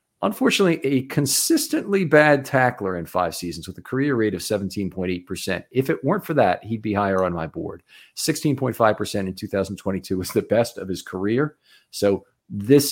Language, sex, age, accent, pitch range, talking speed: English, male, 40-59, American, 90-115 Hz, 165 wpm